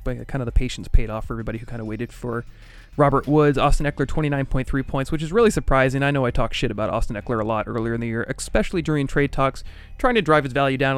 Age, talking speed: 30-49, 265 wpm